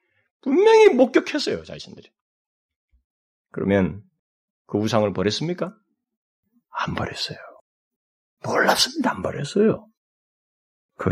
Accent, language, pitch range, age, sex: native, Korean, 185-280 Hz, 30-49, male